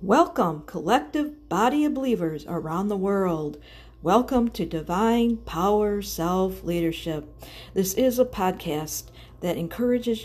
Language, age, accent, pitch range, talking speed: English, 50-69, American, 140-205 Hz, 110 wpm